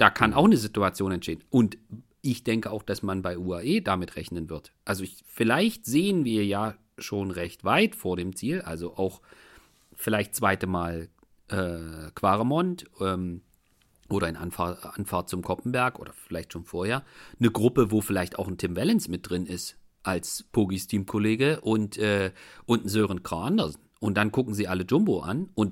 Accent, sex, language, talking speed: German, male, German, 175 wpm